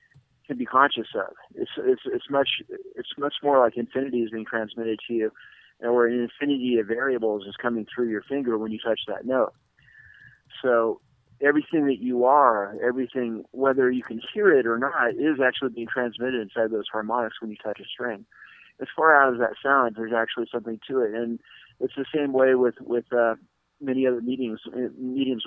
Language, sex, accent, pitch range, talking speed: English, male, American, 115-135 Hz, 195 wpm